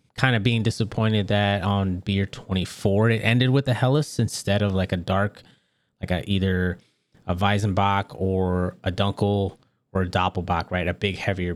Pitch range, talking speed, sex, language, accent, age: 95-120 Hz, 170 wpm, male, English, American, 20-39